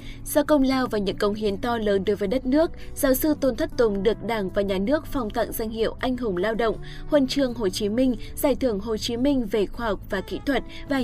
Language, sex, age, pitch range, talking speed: Vietnamese, female, 20-39, 205-265 Hz, 260 wpm